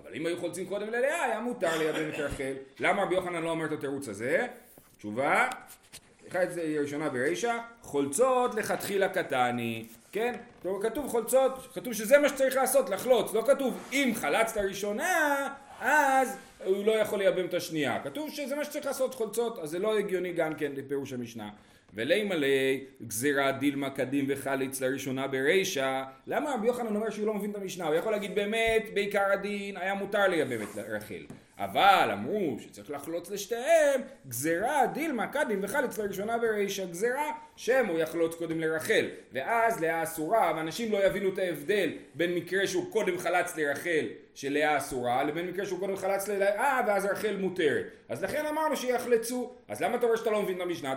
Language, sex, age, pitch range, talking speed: Hebrew, male, 30-49, 155-235 Hz, 170 wpm